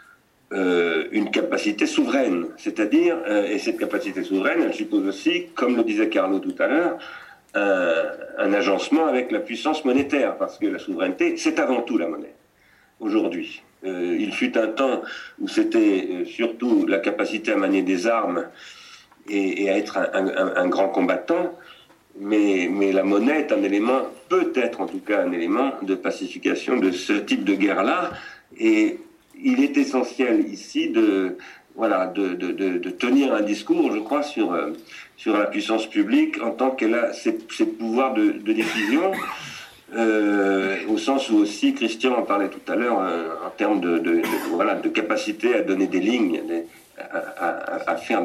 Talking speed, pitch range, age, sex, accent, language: 175 wpm, 270-330 Hz, 50-69, male, French, French